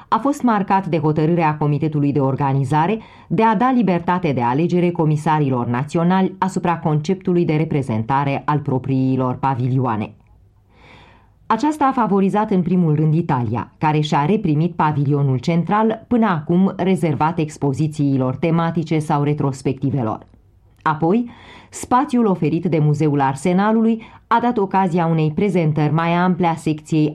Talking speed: 125 wpm